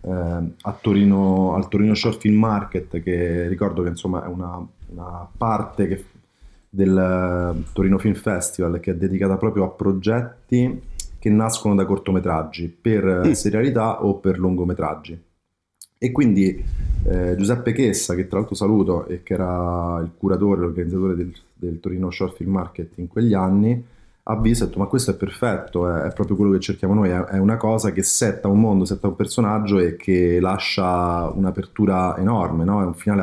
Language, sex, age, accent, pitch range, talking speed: Italian, male, 30-49, native, 90-105 Hz, 165 wpm